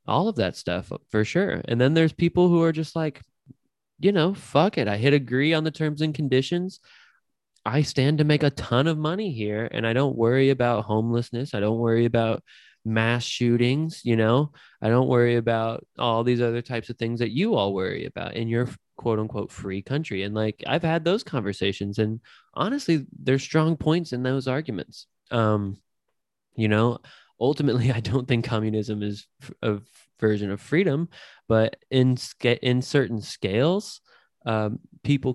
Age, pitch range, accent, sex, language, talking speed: 20-39, 105-130 Hz, American, male, English, 180 wpm